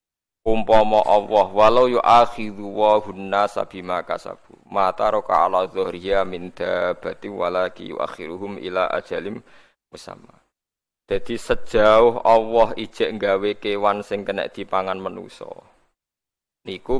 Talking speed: 100 wpm